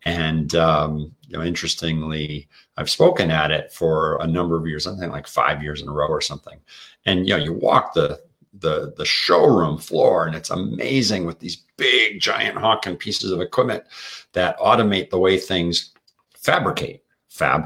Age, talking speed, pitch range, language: 50-69, 175 wpm, 80-90 Hz, English